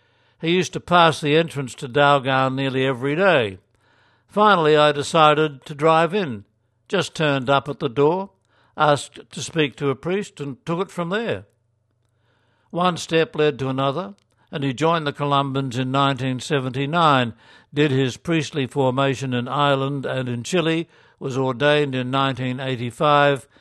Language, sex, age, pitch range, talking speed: English, male, 60-79, 125-155 Hz, 150 wpm